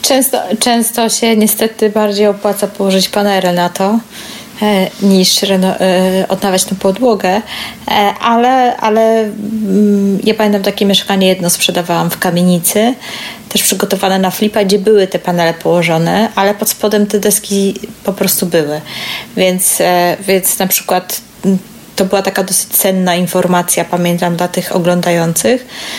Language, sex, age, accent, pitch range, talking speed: Polish, female, 30-49, native, 180-220 Hz, 140 wpm